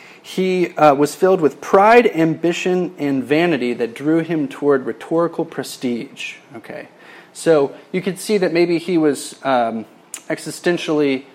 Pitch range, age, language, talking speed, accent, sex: 135-175 Hz, 30-49, English, 135 wpm, American, male